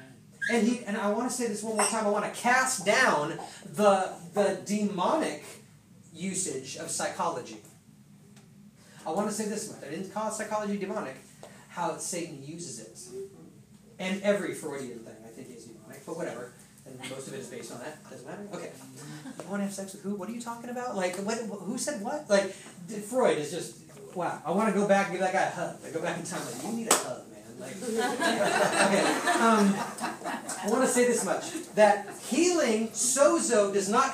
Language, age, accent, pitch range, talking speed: English, 30-49, American, 195-245 Hz, 205 wpm